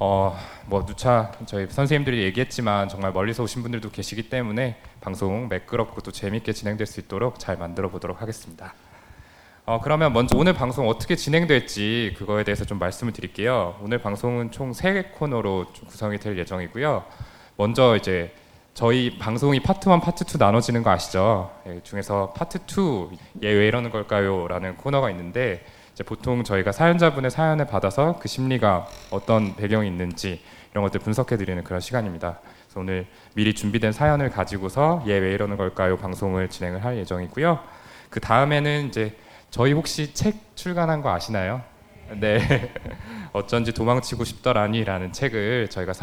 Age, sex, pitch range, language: 20-39, male, 95-125 Hz, Korean